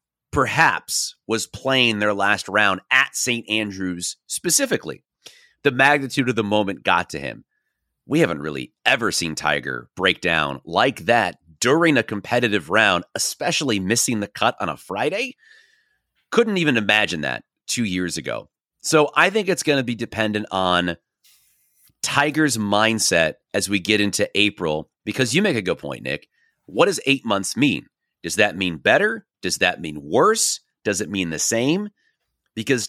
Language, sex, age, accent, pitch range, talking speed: English, male, 30-49, American, 100-140 Hz, 160 wpm